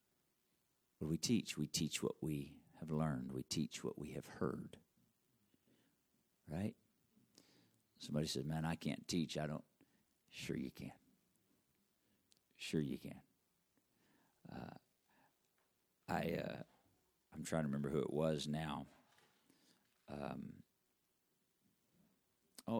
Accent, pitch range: American, 80-105 Hz